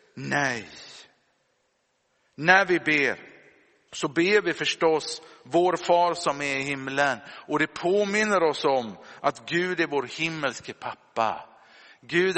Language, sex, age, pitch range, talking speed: Swedish, male, 50-69, 150-190 Hz, 125 wpm